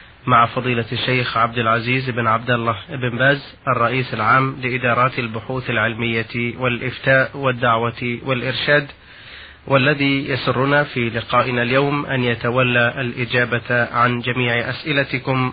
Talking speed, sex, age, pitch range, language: 110 wpm, male, 30-49, 120-135 Hz, Arabic